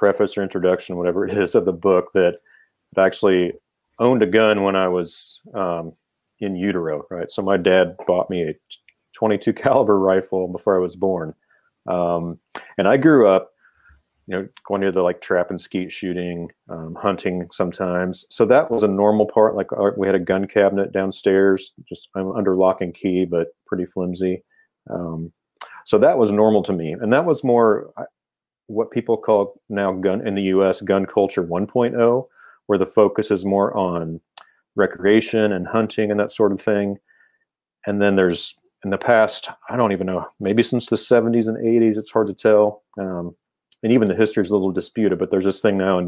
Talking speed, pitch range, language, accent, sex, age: 190 wpm, 90-105 Hz, English, American, male, 40-59